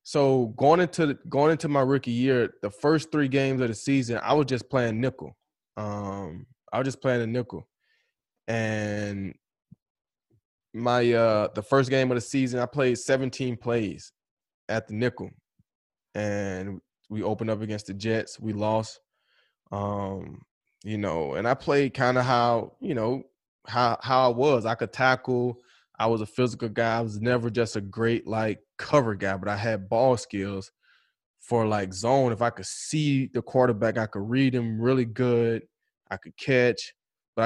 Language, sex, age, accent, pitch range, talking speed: English, male, 20-39, American, 105-130 Hz, 175 wpm